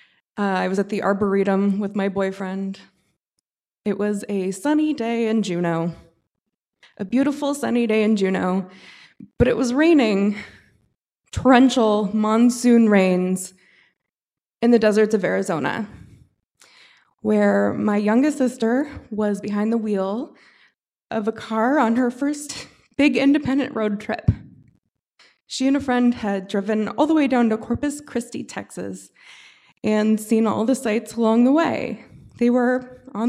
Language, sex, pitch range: English, female, 205-260 Hz